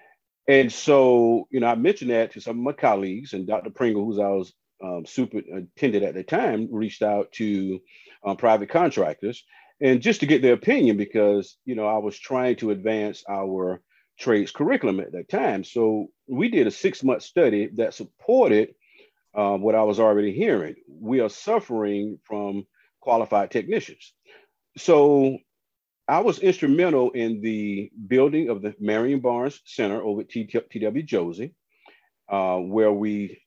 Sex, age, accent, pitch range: male, 40-59, American, 105-130 Hz